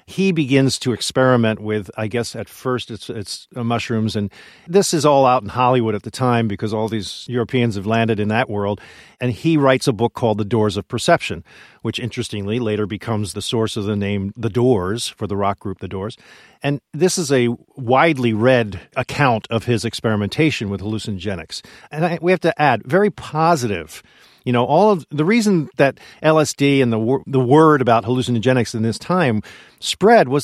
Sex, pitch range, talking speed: male, 110-145 Hz, 190 wpm